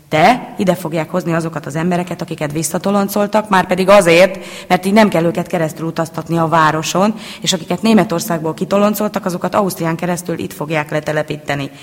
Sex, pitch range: female, 165-185 Hz